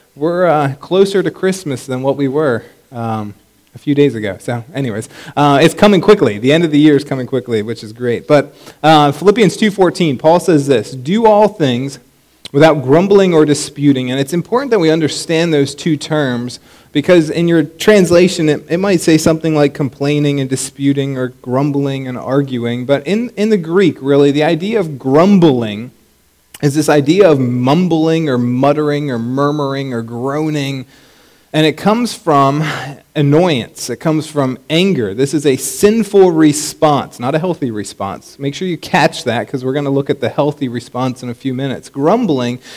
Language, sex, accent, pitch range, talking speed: English, male, American, 130-160 Hz, 180 wpm